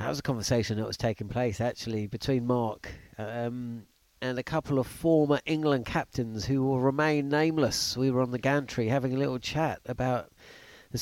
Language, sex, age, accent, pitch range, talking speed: English, male, 40-59, British, 125-160 Hz, 185 wpm